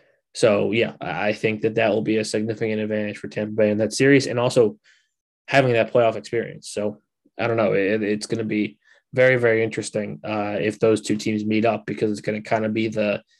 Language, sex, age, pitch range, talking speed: English, male, 20-39, 105-120 Hz, 225 wpm